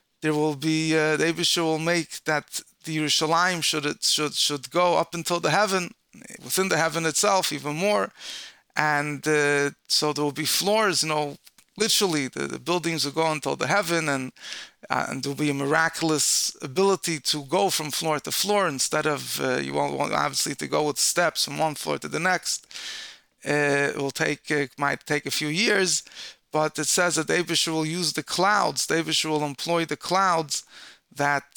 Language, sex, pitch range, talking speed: English, male, 145-175 Hz, 190 wpm